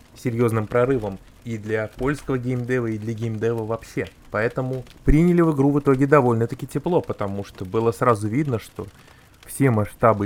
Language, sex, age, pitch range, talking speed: Russian, male, 20-39, 110-135 Hz, 150 wpm